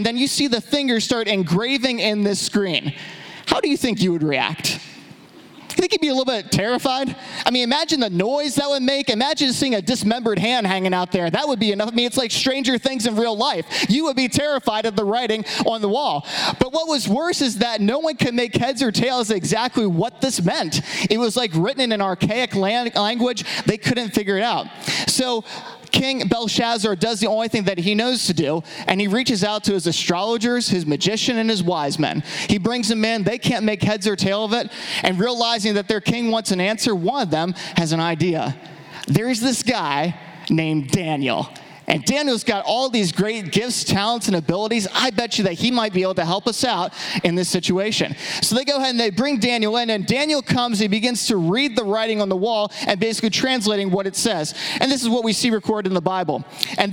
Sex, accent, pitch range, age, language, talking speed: male, American, 190-245 Hz, 20-39, English, 225 wpm